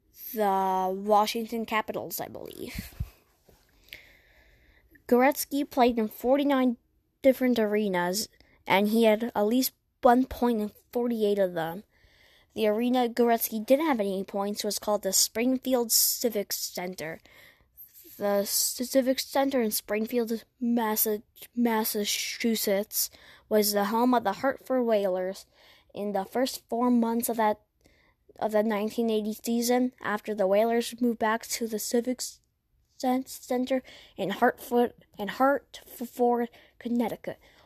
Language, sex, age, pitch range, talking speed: English, female, 10-29, 205-240 Hz, 115 wpm